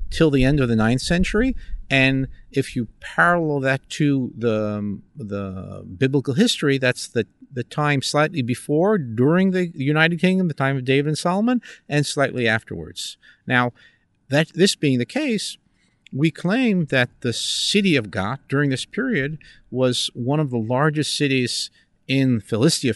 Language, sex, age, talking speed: English, male, 50-69, 155 wpm